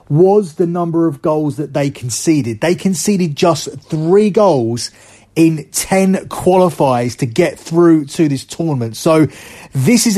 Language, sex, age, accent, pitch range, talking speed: English, male, 30-49, British, 145-180 Hz, 145 wpm